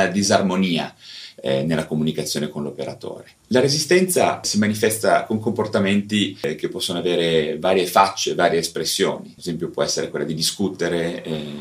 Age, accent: 30-49, native